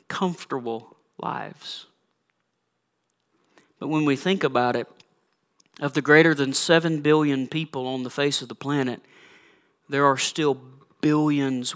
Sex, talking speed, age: male, 130 wpm, 40-59